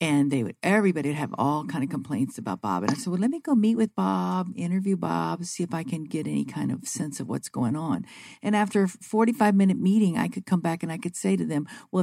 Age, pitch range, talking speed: 50-69, 155-200 Hz, 265 wpm